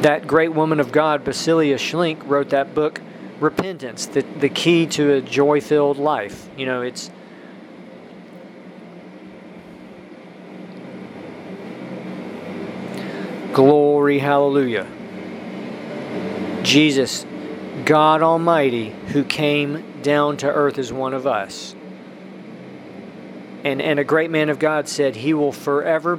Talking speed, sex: 105 wpm, male